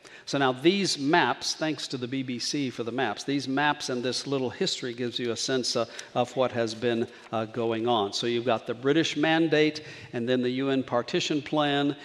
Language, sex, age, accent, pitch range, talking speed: English, male, 50-69, American, 120-140 Hz, 195 wpm